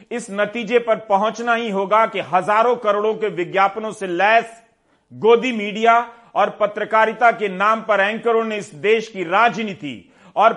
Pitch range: 205-240 Hz